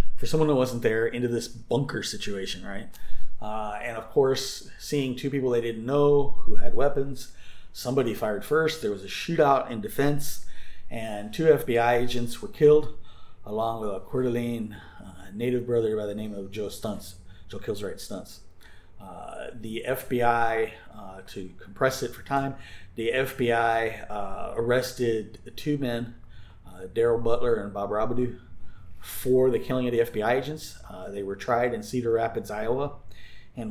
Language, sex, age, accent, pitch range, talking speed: English, male, 40-59, American, 105-130 Hz, 165 wpm